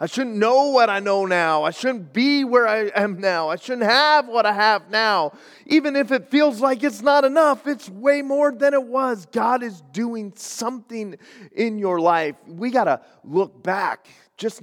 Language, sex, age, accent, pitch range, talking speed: English, male, 30-49, American, 130-215 Hz, 195 wpm